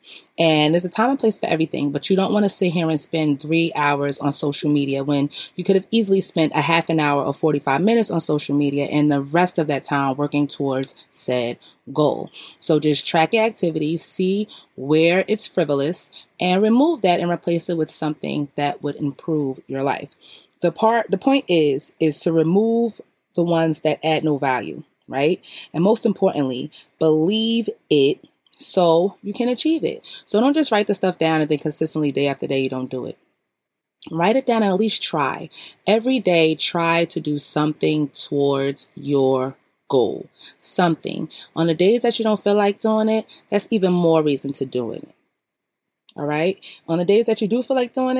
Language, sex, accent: English, female, American